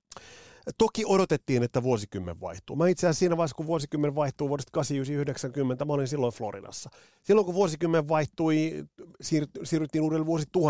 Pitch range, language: 120-170 Hz, Finnish